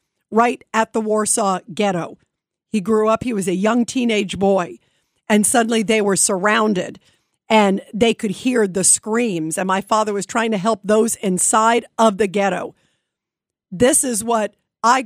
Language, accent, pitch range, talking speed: English, American, 200-235 Hz, 165 wpm